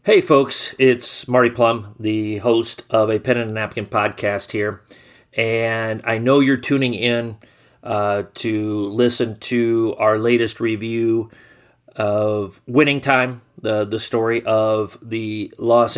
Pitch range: 105-120 Hz